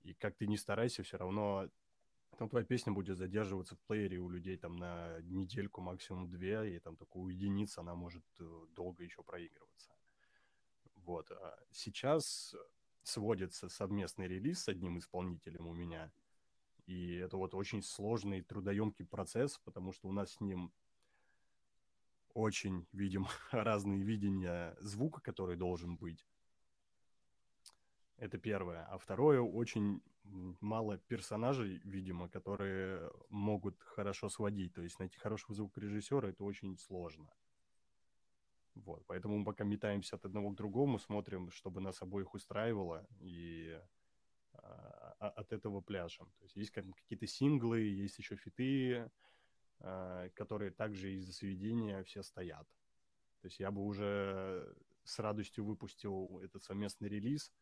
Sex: male